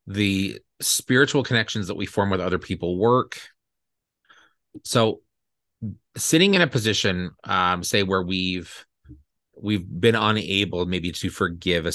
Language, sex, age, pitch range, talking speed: English, male, 30-49, 90-110 Hz, 130 wpm